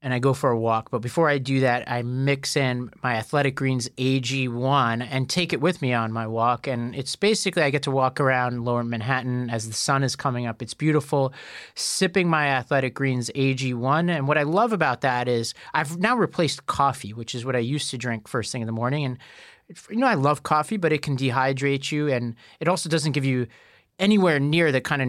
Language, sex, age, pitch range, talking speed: English, male, 30-49, 125-150 Hz, 225 wpm